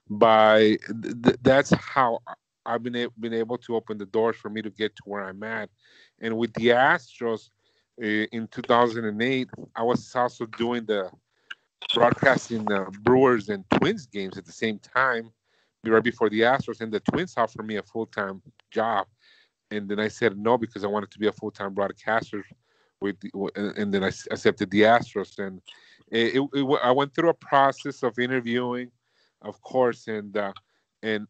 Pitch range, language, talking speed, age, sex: 105-120 Hz, English, 185 wpm, 40-59, male